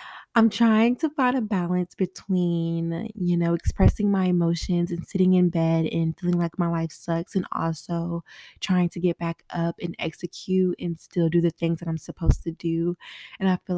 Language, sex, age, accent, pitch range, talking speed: English, female, 20-39, American, 170-185 Hz, 190 wpm